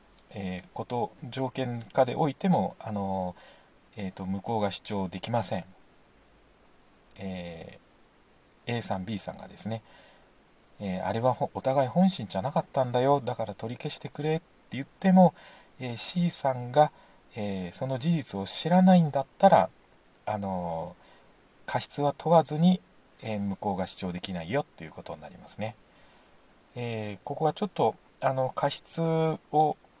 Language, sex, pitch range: Japanese, male, 100-145 Hz